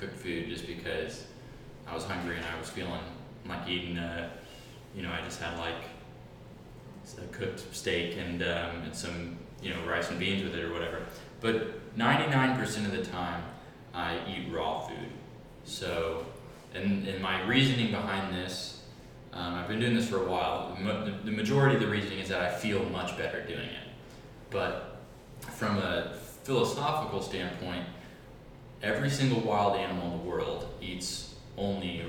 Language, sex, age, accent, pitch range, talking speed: English, male, 20-39, American, 90-125 Hz, 170 wpm